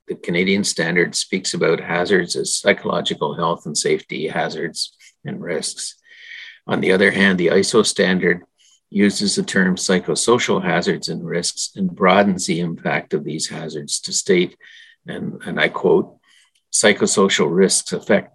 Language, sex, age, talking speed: English, male, 50-69, 145 wpm